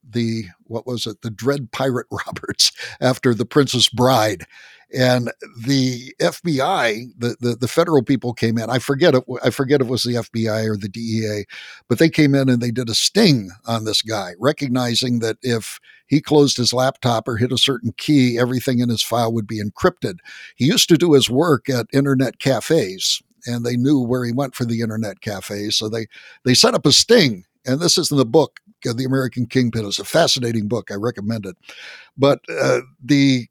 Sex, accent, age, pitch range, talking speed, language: male, American, 60-79, 115-140 Hz, 195 wpm, English